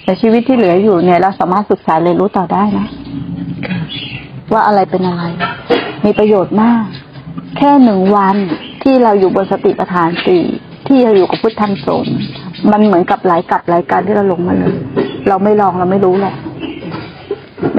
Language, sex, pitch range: Thai, female, 180-230 Hz